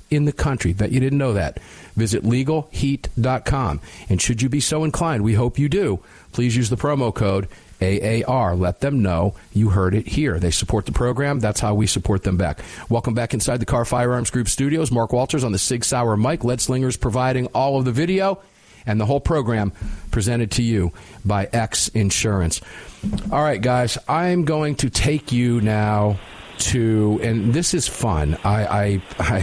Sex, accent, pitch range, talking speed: male, American, 100-135 Hz, 190 wpm